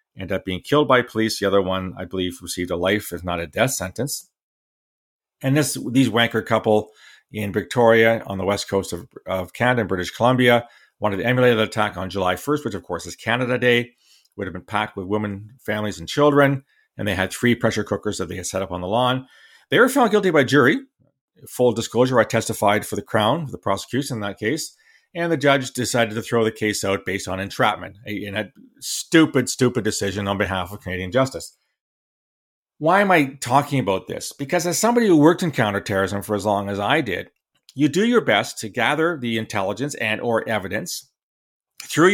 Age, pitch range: 40-59, 100-135 Hz